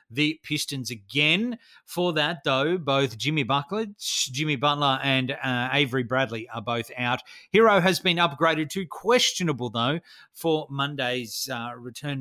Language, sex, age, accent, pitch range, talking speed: English, male, 30-49, Australian, 135-180 Hz, 145 wpm